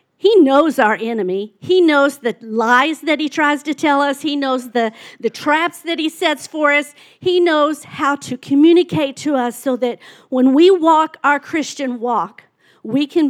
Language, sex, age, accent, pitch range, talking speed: English, female, 50-69, American, 240-300 Hz, 185 wpm